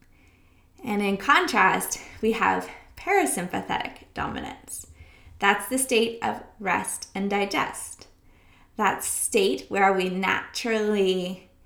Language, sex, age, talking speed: English, female, 20-39, 100 wpm